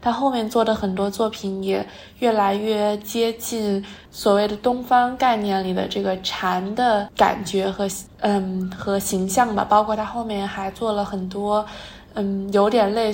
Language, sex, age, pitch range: Chinese, female, 20-39, 200-230 Hz